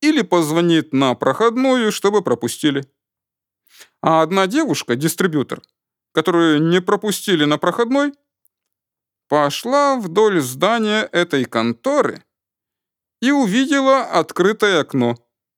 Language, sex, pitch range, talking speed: Russian, male, 145-245 Hz, 90 wpm